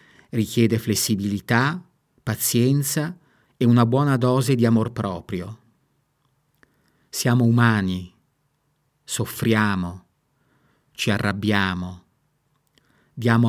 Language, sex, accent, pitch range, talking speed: Italian, male, native, 105-130 Hz, 70 wpm